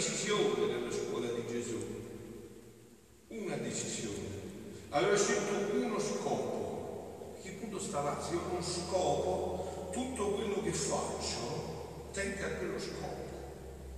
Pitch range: 150-195 Hz